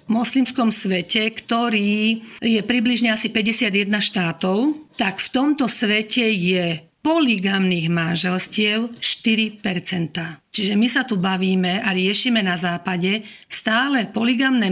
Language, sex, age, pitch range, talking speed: Slovak, female, 50-69, 185-225 Hz, 115 wpm